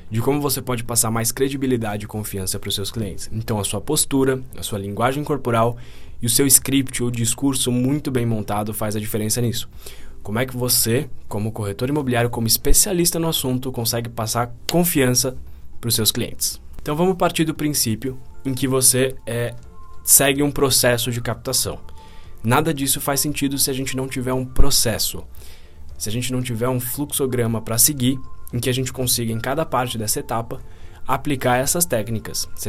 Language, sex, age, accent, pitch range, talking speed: Portuguese, male, 10-29, Brazilian, 110-135 Hz, 185 wpm